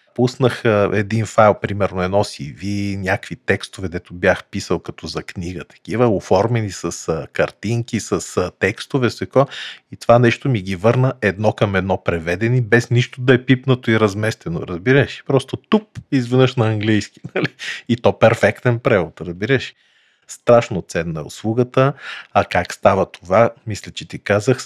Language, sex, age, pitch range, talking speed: Bulgarian, male, 40-59, 100-120 Hz, 150 wpm